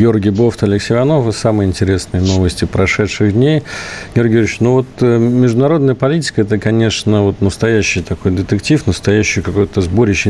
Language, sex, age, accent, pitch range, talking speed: Russian, male, 40-59, native, 95-115 Hz, 145 wpm